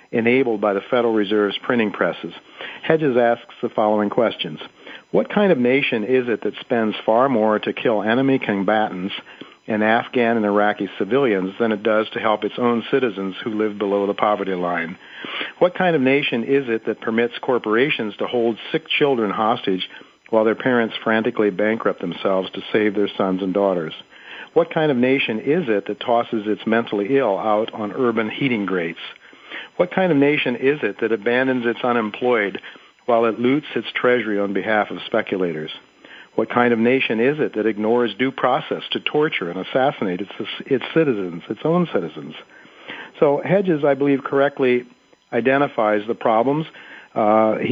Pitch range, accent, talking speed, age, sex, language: 105-130 Hz, American, 170 wpm, 50-69, male, English